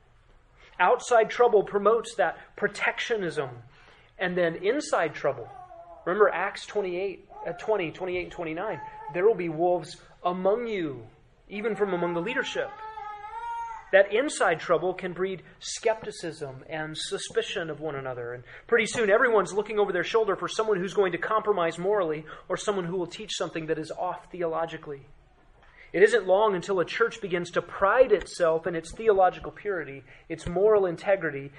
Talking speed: 150 wpm